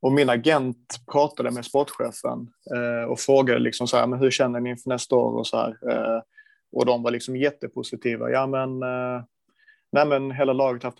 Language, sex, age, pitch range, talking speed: Swedish, male, 30-49, 120-140 Hz, 195 wpm